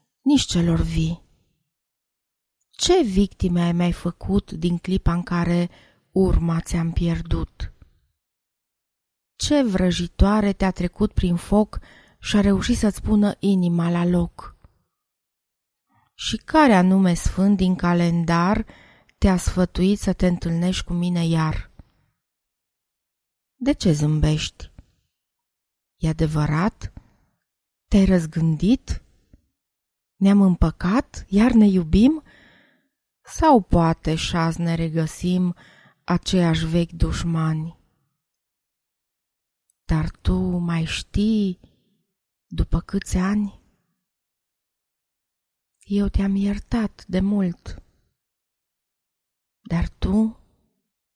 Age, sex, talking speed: 20-39, female, 90 wpm